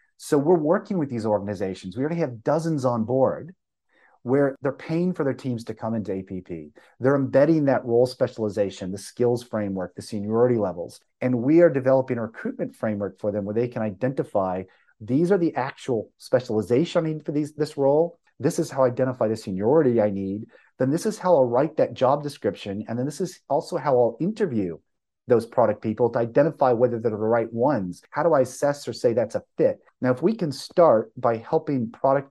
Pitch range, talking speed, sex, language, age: 110-150 Hz, 200 wpm, male, English, 30-49